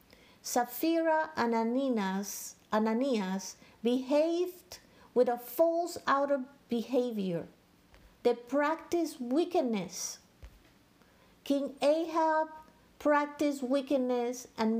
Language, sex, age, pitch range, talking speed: English, female, 50-69, 220-290 Hz, 75 wpm